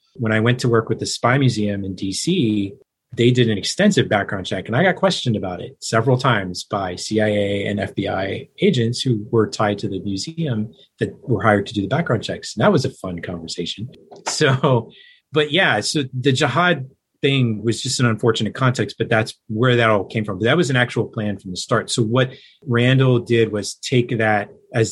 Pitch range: 105-125 Hz